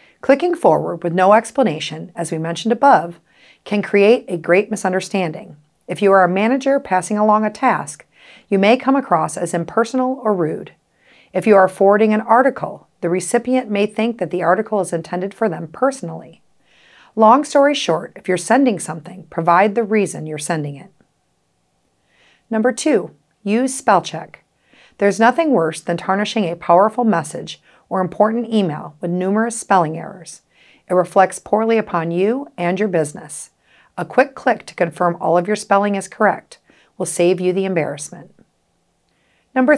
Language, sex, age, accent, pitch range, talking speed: English, female, 40-59, American, 175-230 Hz, 160 wpm